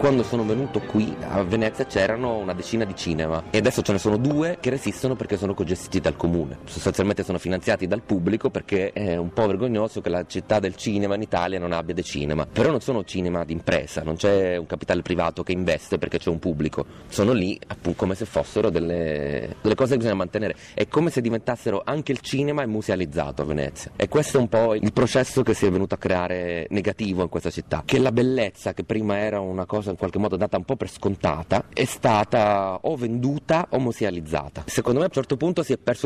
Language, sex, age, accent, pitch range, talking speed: Italian, male, 30-49, native, 90-120 Hz, 220 wpm